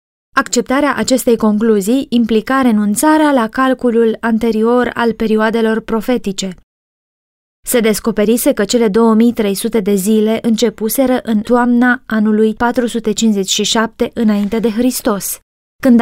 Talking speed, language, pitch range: 100 wpm, Romanian, 215-255 Hz